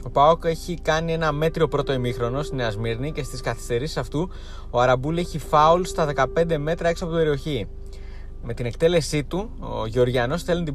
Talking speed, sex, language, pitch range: 185 wpm, male, Greek, 120-150 Hz